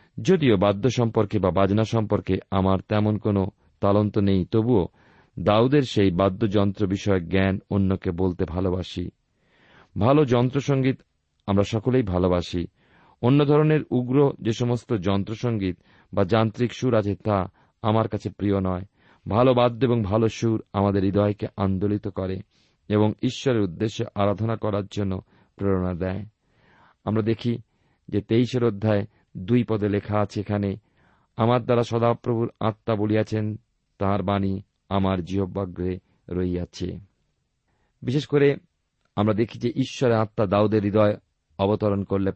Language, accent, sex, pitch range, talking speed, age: Bengali, native, male, 95-115 Hz, 120 wpm, 40-59